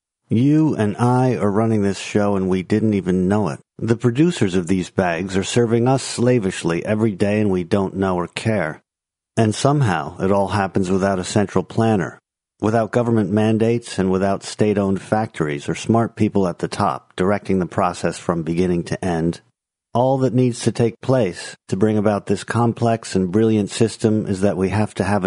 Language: English